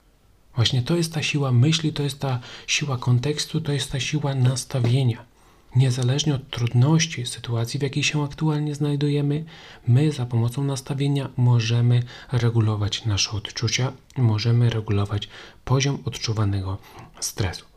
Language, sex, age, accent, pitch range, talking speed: Polish, male, 30-49, native, 110-140 Hz, 130 wpm